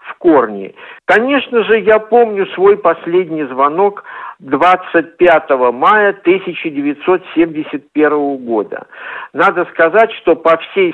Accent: native